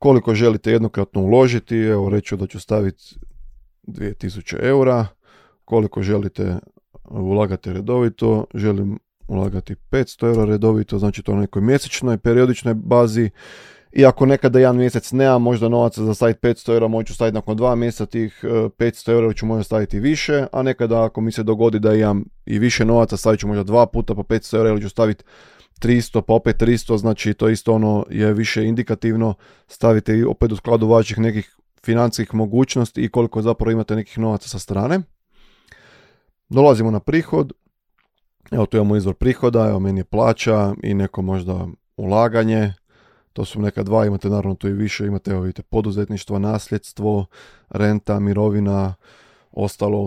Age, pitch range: 20-39, 105-115 Hz